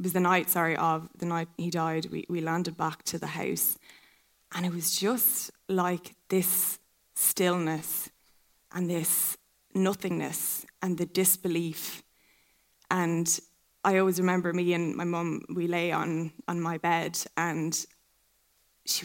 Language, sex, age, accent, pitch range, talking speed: English, female, 10-29, Irish, 165-185 Hz, 145 wpm